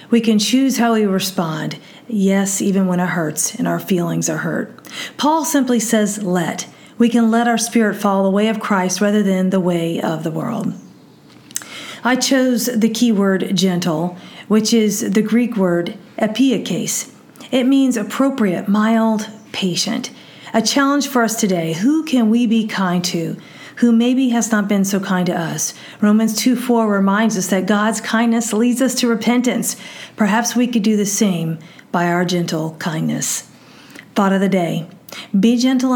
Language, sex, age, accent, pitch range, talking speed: English, female, 40-59, American, 190-235 Hz, 170 wpm